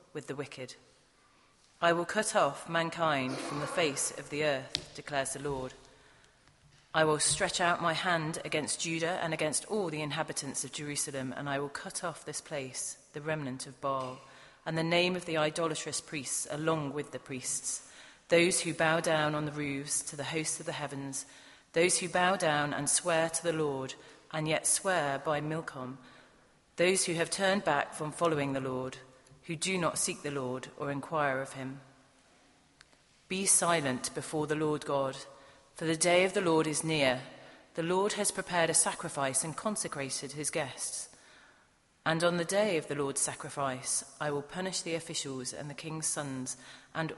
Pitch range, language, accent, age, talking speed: 140-170 Hz, English, British, 40-59, 180 wpm